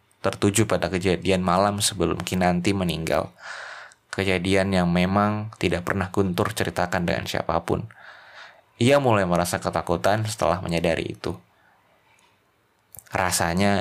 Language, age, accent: Indonesian, 20-39, native